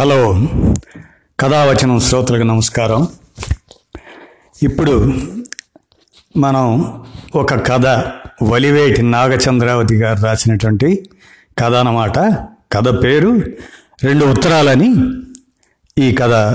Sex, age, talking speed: male, 60-79, 70 wpm